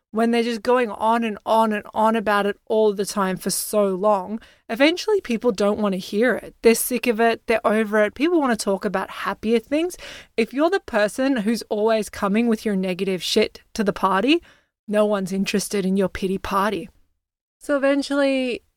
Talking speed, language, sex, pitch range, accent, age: 195 wpm, English, female, 200-230 Hz, Australian, 20-39